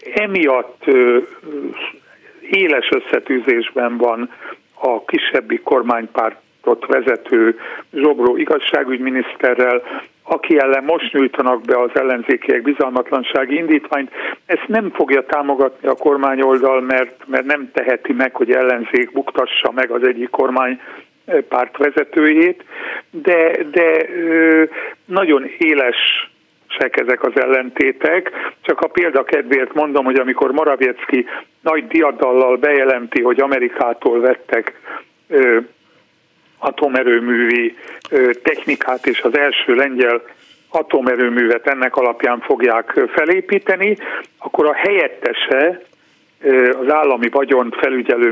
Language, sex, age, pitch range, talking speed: Hungarian, male, 60-79, 130-210 Hz, 95 wpm